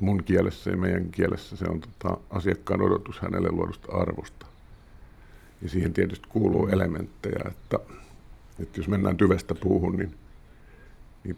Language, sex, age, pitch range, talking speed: Finnish, male, 50-69, 80-95 Hz, 135 wpm